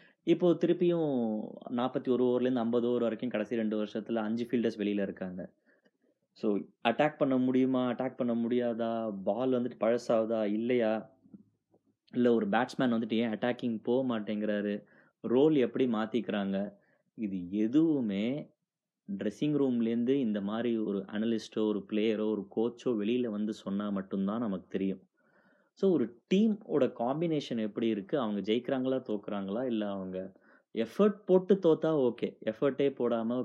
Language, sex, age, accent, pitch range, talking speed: Tamil, male, 20-39, native, 105-130 Hz, 130 wpm